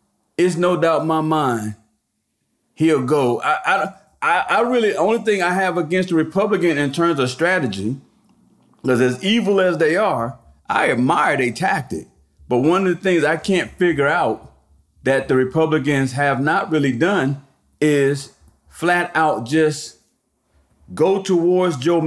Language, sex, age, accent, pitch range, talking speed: English, male, 40-59, American, 125-175 Hz, 150 wpm